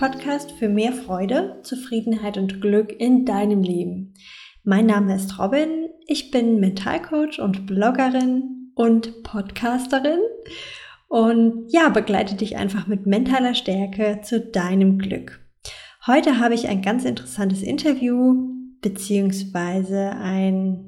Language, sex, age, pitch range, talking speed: German, female, 20-39, 200-245 Hz, 120 wpm